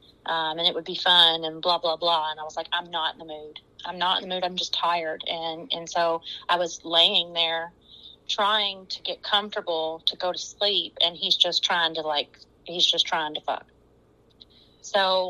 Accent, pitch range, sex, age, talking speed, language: American, 160-195 Hz, female, 30-49, 210 wpm, English